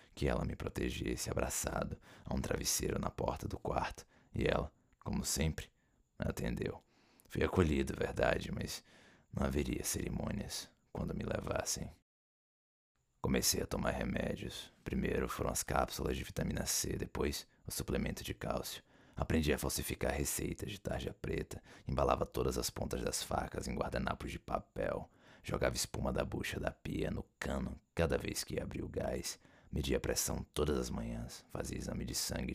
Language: Portuguese